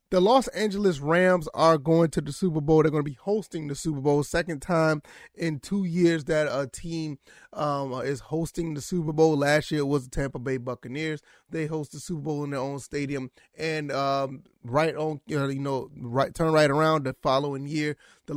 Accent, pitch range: American, 145-180 Hz